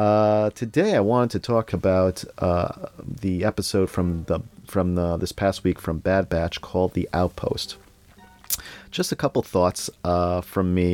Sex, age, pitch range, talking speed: male, 40-59, 85-105 Hz, 165 wpm